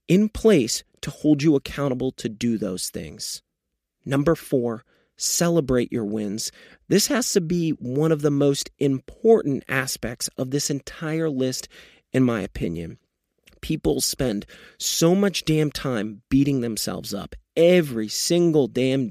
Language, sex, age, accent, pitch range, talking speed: English, male, 30-49, American, 125-160 Hz, 140 wpm